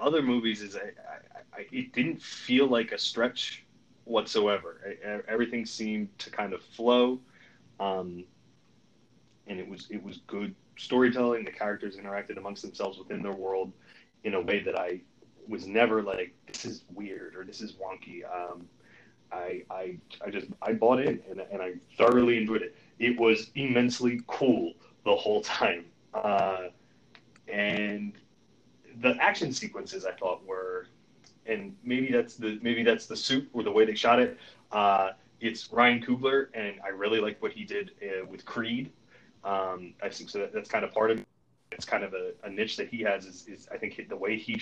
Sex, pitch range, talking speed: male, 100-125 Hz, 180 wpm